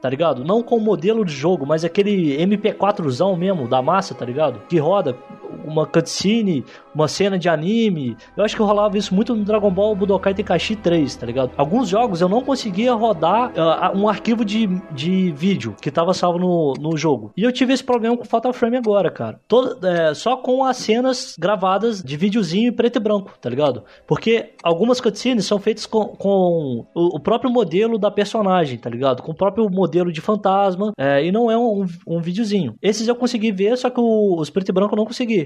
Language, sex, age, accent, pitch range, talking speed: Portuguese, male, 20-39, Brazilian, 185-230 Hz, 215 wpm